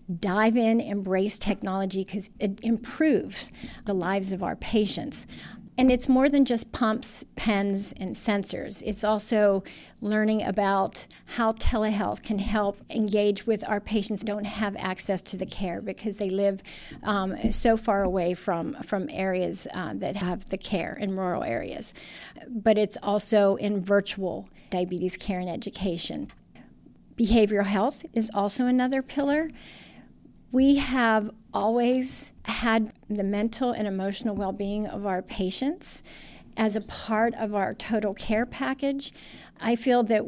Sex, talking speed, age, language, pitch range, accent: female, 145 wpm, 50-69, English, 195-235 Hz, American